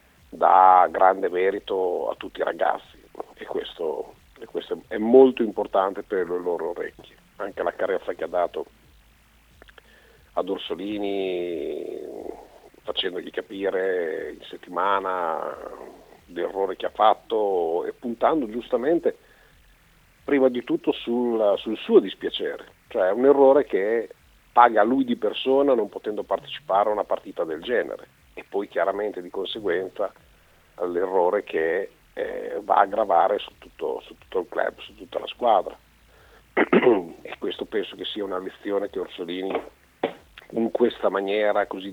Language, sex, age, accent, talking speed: Italian, male, 50-69, native, 135 wpm